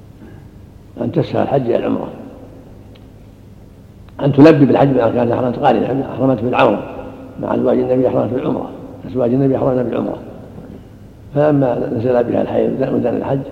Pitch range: 105-125 Hz